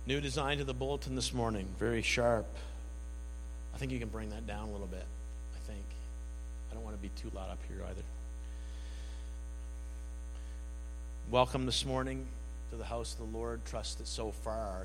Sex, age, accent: male, 50-69, American